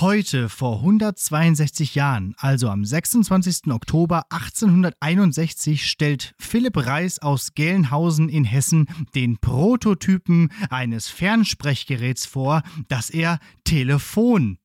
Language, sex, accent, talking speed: German, male, German, 100 wpm